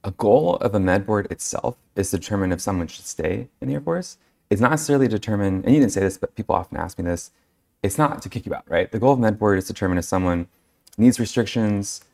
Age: 20-39